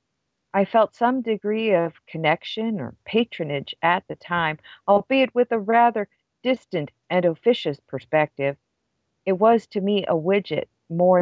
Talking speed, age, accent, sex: 140 wpm, 50-69, American, female